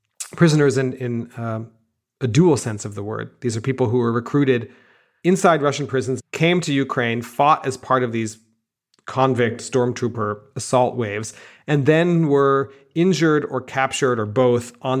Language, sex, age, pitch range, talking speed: English, male, 40-59, 115-135 Hz, 160 wpm